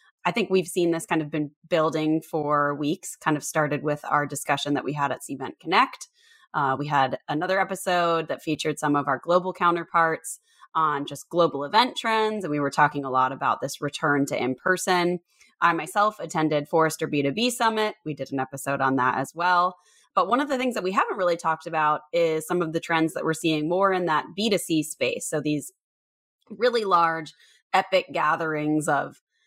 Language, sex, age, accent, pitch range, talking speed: English, female, 20-39, American, 150-195 Hz, 195 wpm